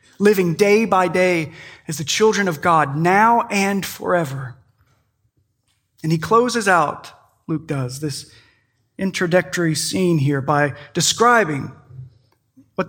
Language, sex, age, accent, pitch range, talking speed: English, male, 30-49, American, 140-200 Hz, 115 wpm